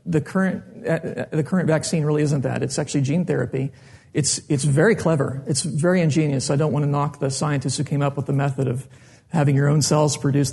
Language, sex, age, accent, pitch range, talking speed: English, male, 40-59, American, 140-165 Hz, 215 wpm